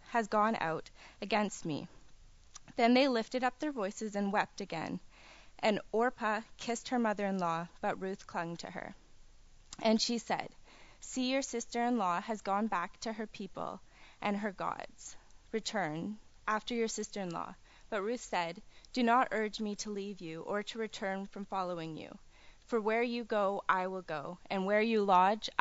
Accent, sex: American, female